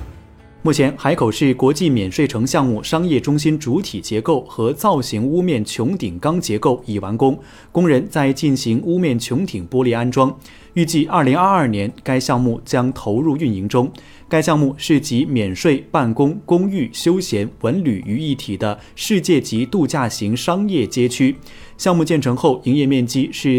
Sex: male